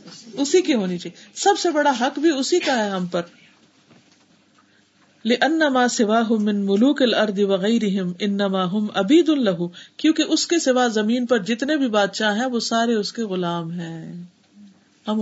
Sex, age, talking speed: female, 50-69, 165 wpm